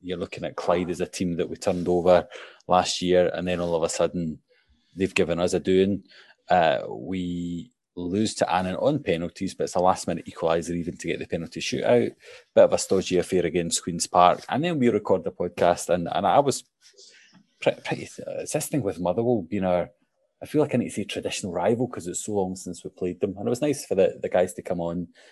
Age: 20-39